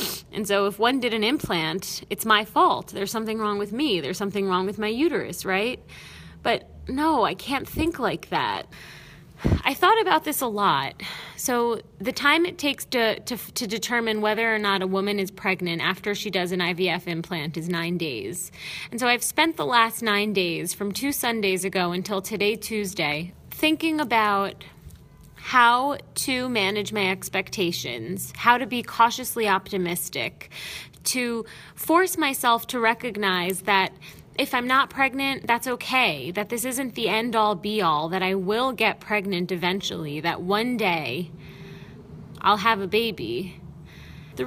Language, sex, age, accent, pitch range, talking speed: English, female, 30-49, American, 190-240 Hz, 160 wpm